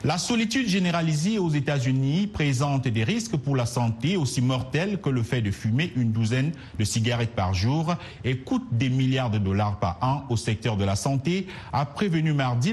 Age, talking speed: 50-69, 190 wpm